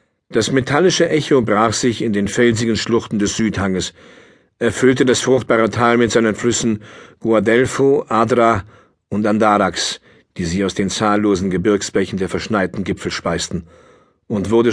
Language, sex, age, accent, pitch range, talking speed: German, male, 50-69, German, 100-115 Hz, 140 wpm